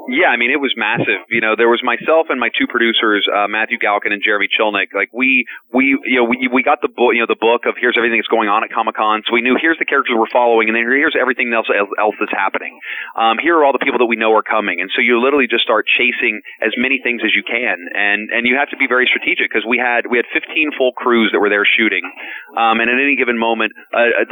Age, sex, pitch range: 30-49, male, 105-125 Hz